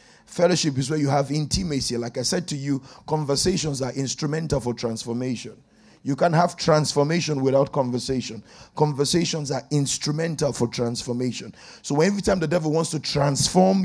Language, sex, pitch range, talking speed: English, male, 140-185 Hz, 150 wpm